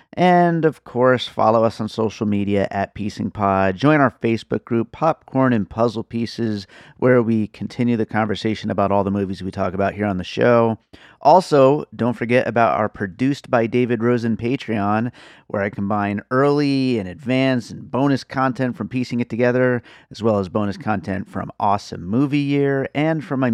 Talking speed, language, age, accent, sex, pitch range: 175 wpm, English, 30-49, American, male, 105-135 Hz